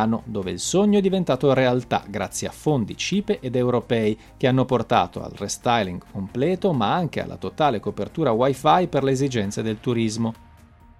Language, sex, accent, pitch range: Italian, male, native, 105-145 Hz